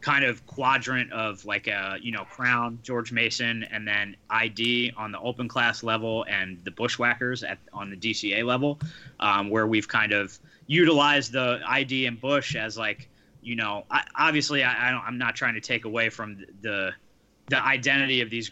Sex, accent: male, American